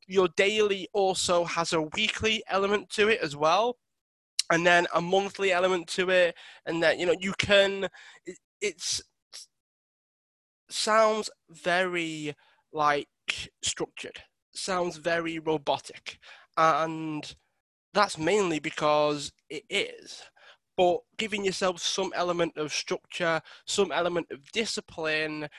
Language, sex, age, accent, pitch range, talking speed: English, male, 20-39, British, 160-195 Hz, 115 wpm